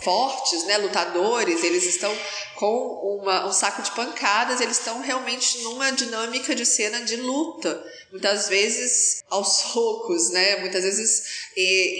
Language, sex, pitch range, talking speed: Portuguese, female, 200-270 Hz, 140 wpm